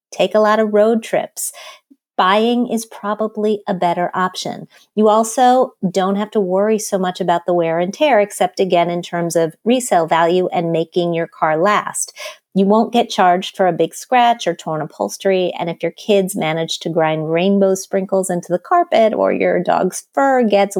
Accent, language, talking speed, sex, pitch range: American, English, 190 wpm, female, 175-225 Hz